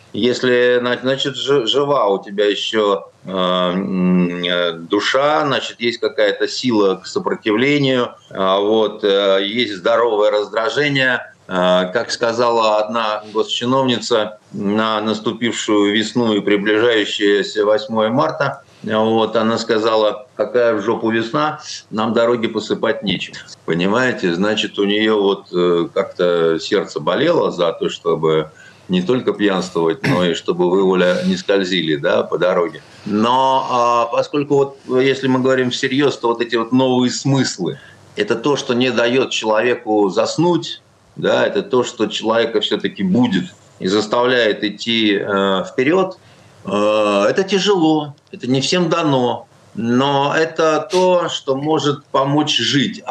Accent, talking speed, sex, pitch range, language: native, 125 wpm, male, 105-135 Hz, Russian